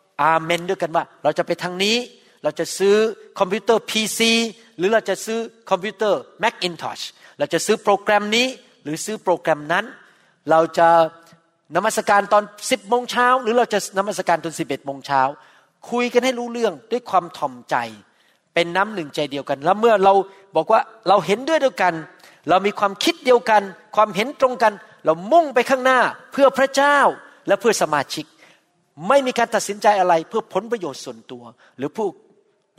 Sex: male